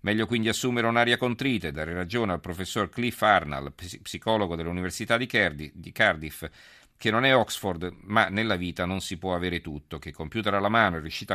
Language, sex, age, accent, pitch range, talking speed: Italian, male, 40-59, native, 85-115 Hz, 180 wpm